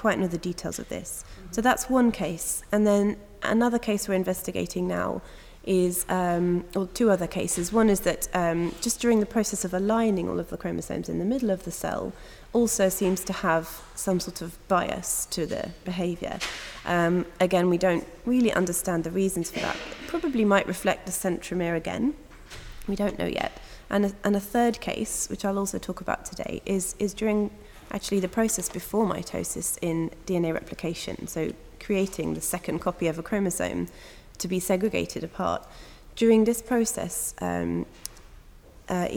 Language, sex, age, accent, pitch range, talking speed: Portuguese, female, 20-39, British, 170-210 Hz, 170 wpm